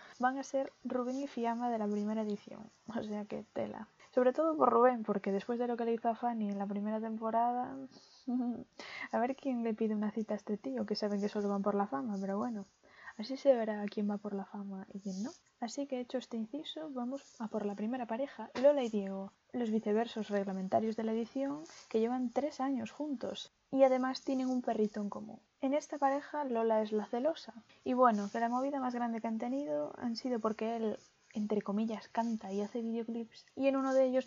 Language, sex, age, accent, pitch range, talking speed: Spanish, female, 20-39, Spanish, 210-255 Hz, 220 wpm